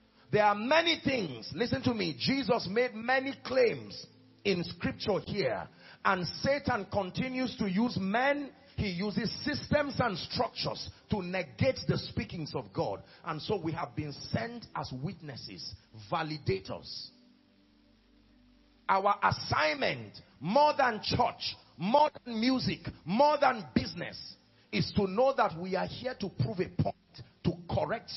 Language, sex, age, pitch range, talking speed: English, male, 40-59, 150-245 Hz, 135 wpm